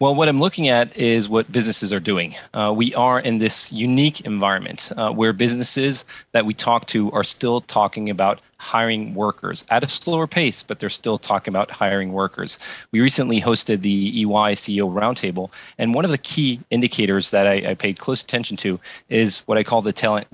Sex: male